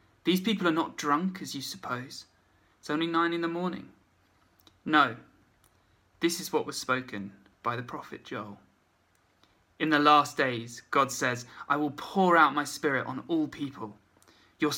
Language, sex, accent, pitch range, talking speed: English, male, British, 115-150 Hz, 160 wpm